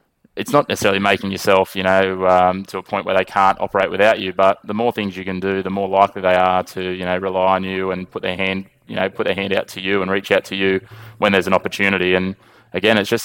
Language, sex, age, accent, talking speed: English, male, 20-39, Australian, 270 wpm